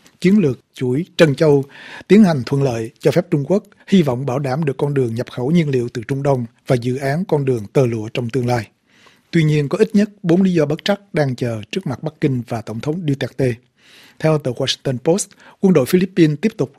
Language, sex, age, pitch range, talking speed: Vietnamese, male, 60-79, 130-175 Hz, 235 wpm